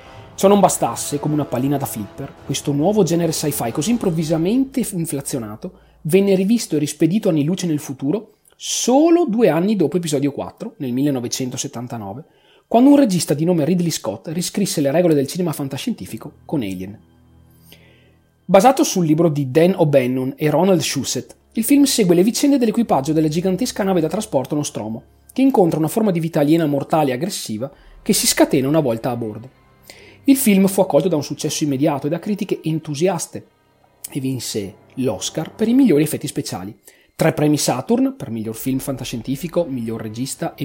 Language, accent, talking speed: Italian, native, 170 wpm